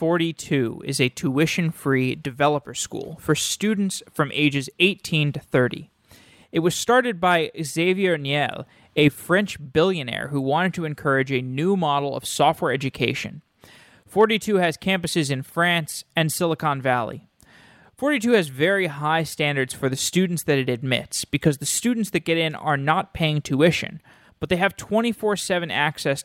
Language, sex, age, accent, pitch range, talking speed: English, male, 20-39, American, 140-185 Hz, 150 wpm